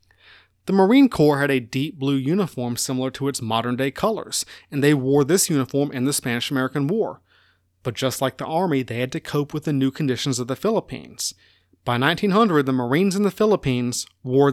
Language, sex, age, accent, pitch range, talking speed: English, male, 30-49, American, 130-180 Hz, 200 wpm